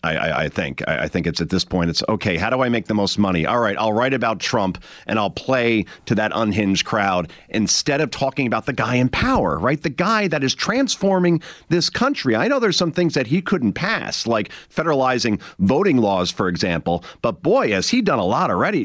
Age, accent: 40-59, American